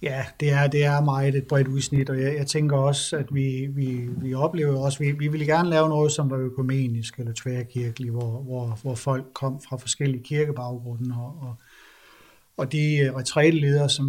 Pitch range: 125-145 Hz